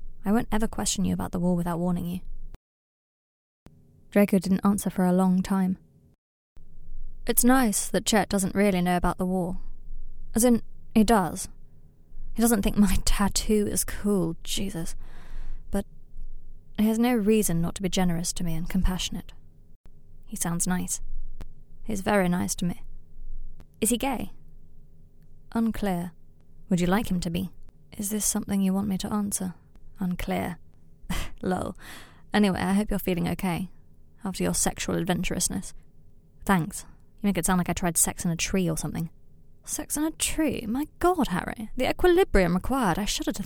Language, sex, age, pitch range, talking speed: English, female, 20-39, 140-210 Hz, 165 wpm